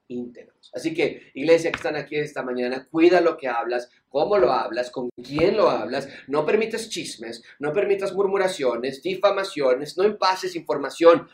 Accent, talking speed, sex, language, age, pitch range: Mexican, 155 wpm, male, Spanish, 40-59, 150-210 Hz